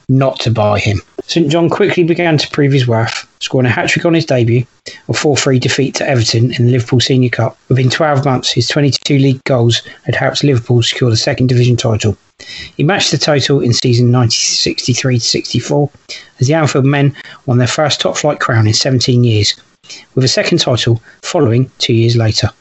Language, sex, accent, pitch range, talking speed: English, male, British, 120-145 Hz, 190 wpm